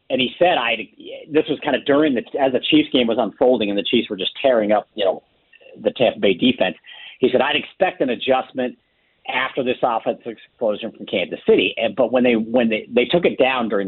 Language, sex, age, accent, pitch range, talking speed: English, male, 50-69, American, 110-145 Hz, 230 wpm